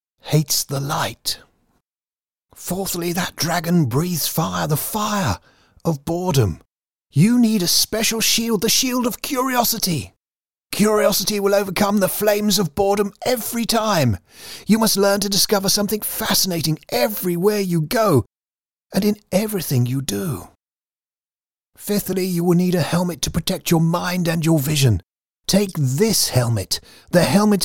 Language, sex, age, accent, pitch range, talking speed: English, male, 30-49, British, 140-205 Hz, 135 wpm